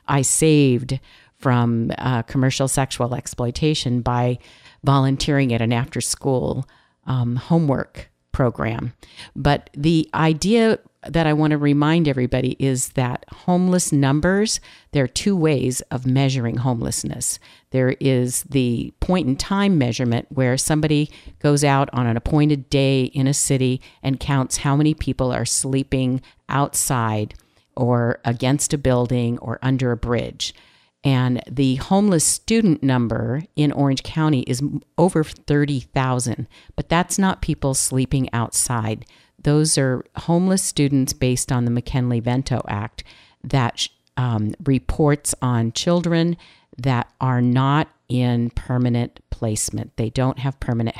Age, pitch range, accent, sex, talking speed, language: 50-69, 120-145 Hz, American, female, 130 wpm, English